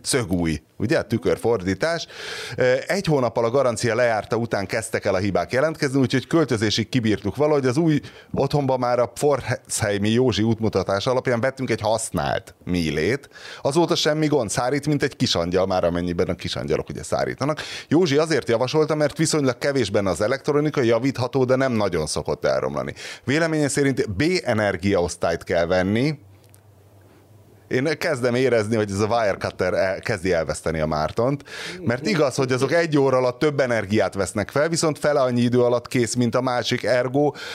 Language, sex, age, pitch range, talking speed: Hungarian, male, 30-49, 105-140 Hz, 155 wpm